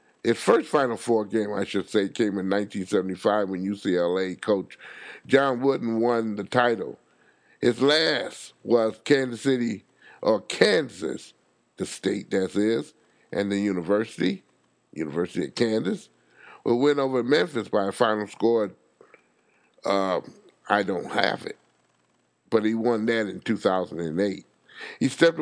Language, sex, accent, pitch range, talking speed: English, male, American, 100-130 Hz, 135 wpm